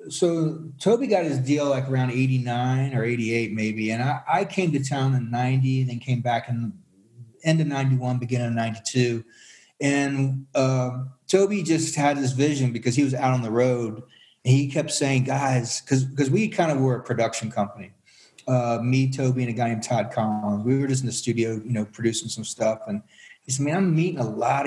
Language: English